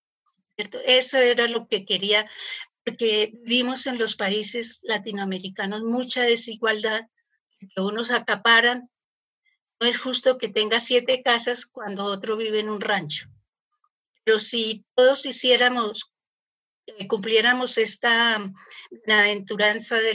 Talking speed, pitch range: 115 wpm, 210-245 Hz